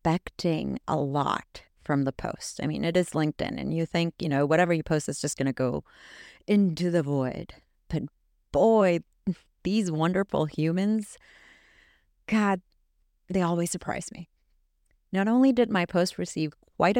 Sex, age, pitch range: female, 30-49, 160-215 Hz